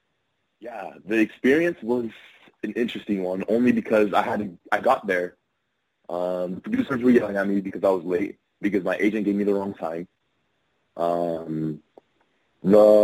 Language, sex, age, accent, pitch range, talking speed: English, male, 30-49, American, 95-115 Hz, 160 wpm